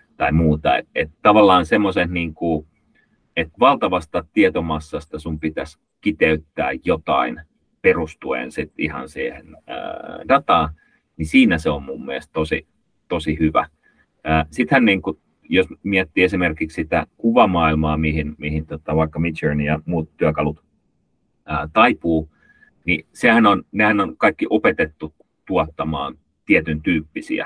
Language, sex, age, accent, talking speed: Finnish, male, 30-49, native, 115 wpm